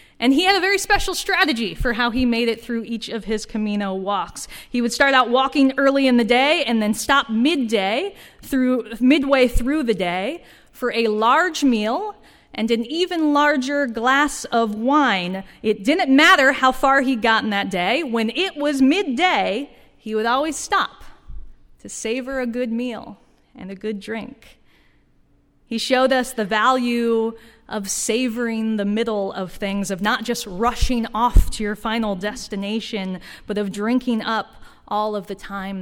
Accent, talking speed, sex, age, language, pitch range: American, 170 wpm, female, 30-49, English, 200-250 Hz